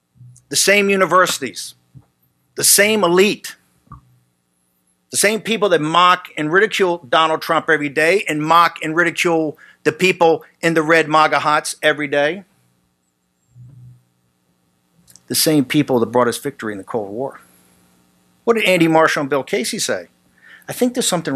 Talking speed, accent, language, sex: 150 wpm, American, English, male